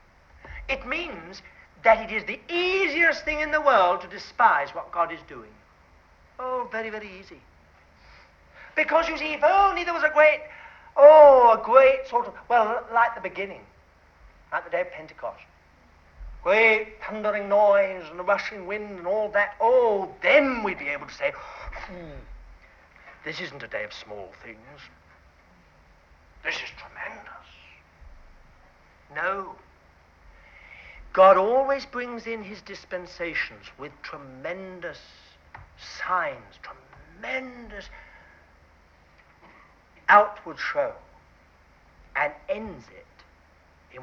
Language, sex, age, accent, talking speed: English, male, 60-79, British, 120 wpm